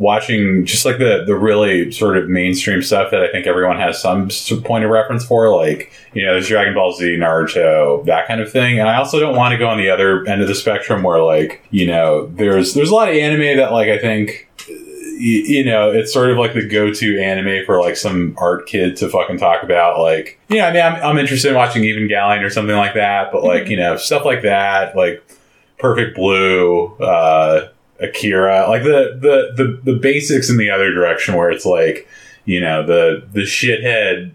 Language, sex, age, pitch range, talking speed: English, male, 30-49, 95-140 Hz, 215 wpm